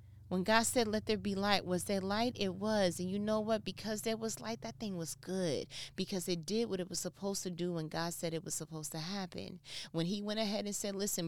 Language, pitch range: English, 160-200 Hz